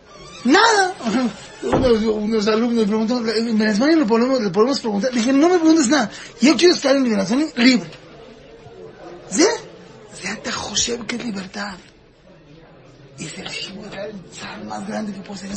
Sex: male